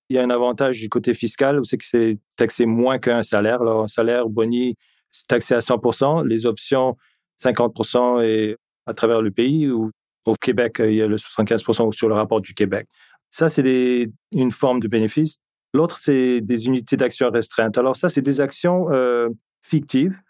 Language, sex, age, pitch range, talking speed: French, male, 40-59, 120-140 Hz, 190 wpm